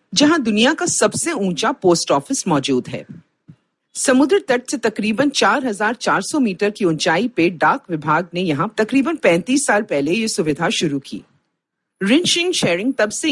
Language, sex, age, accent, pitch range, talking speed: Hindi, female, 40-59, native, 160-250 Hz, 145 wpm